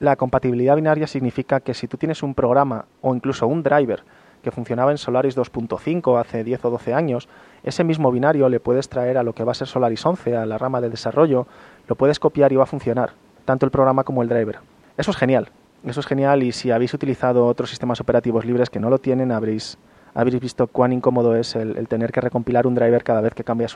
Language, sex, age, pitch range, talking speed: Spanish, male, 30-49, 115-135 Hz, 230 wpm